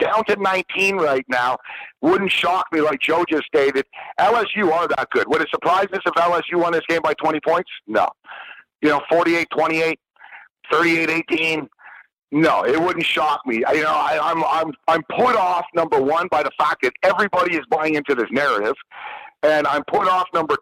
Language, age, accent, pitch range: English, 50-69, American, 150-185 Hz